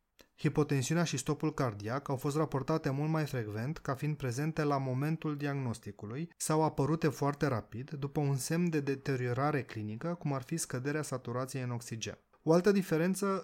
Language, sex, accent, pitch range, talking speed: Romanian, male, native, 125-155 Hz, 160 wpm